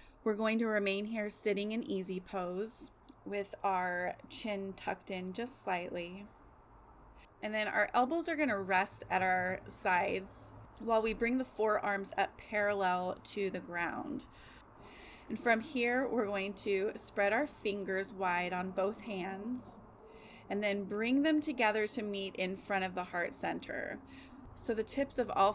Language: English